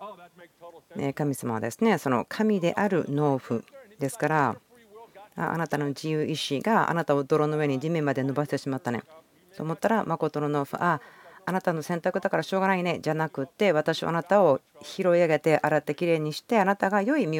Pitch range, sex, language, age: 135-165 Hz, female, Japanese, 40-59